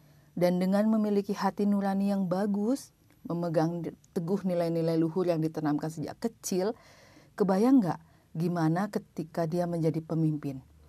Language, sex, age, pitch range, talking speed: Indonesian, female, 40-59, 155-200 Hz, 120 wpm